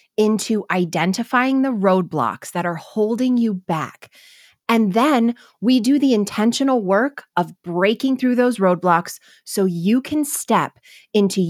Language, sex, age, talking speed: English, female, 20-39, 135 wpm